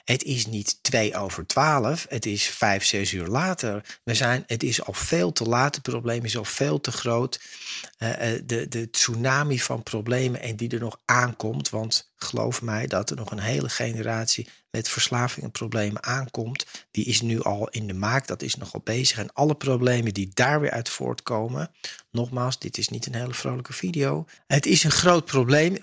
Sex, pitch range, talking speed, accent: male, 110-140 Hz, 190 wpm, Dutch